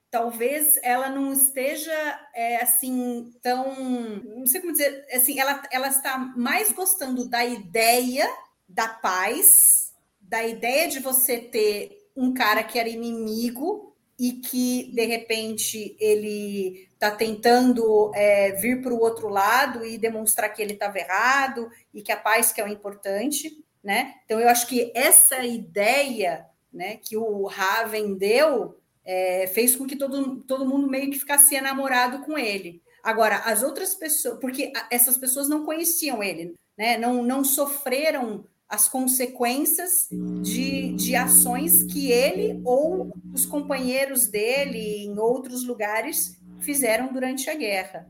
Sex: female